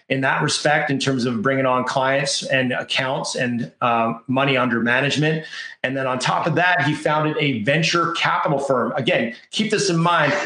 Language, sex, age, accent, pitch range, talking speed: English, male, 30-49, American, 130-150 Hz, 190 wpm